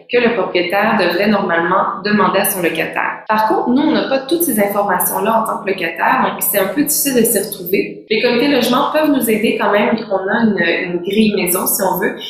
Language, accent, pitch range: French, Canadian, 190-225 Hz